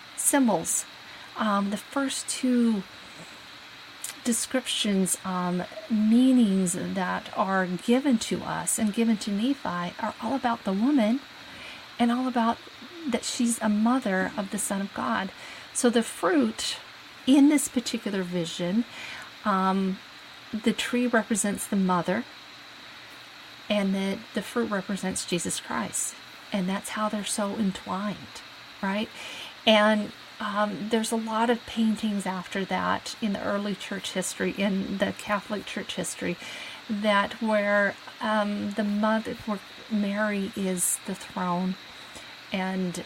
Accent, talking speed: American, 125 wpm